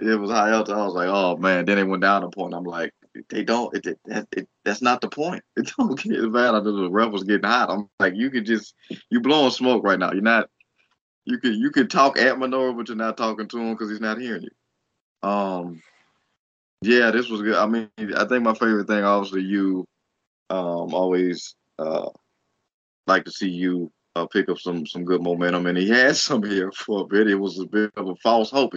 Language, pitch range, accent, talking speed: English, 100-125 Hz, American, 225 wpm